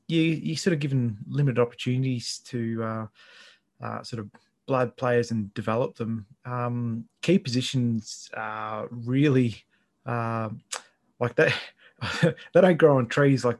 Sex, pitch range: male, 115-135 Hz